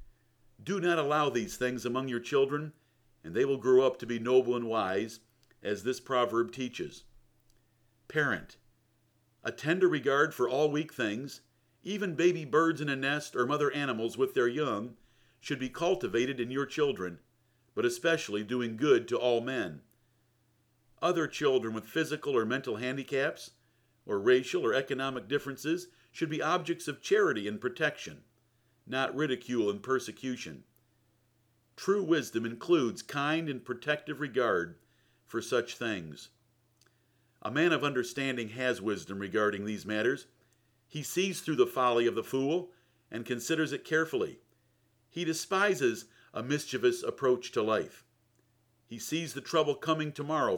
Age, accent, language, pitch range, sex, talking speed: 50-69, American, English, 115-155 Hz, male, 145 wpm